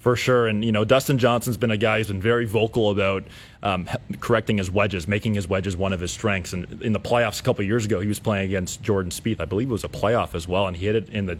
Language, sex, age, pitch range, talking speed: English, male, 30-49, 100-120 Hz, 290 wpm